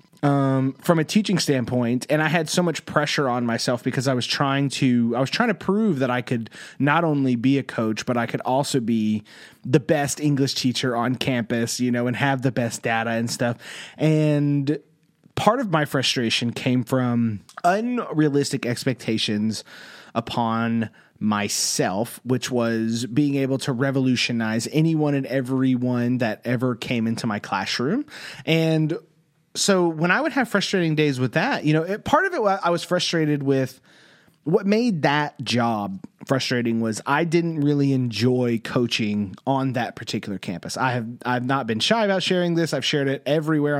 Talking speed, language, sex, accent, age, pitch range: 170 wpm, English, male, American, 30-49, 120-155 Hz